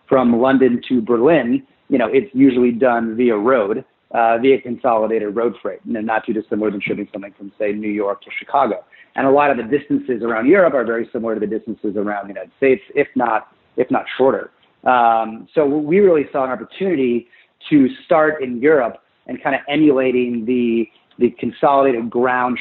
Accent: American